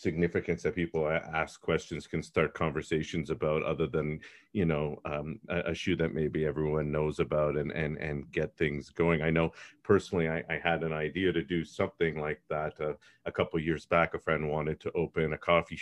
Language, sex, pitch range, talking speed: English, male, 80-95 Hz, 200 wpm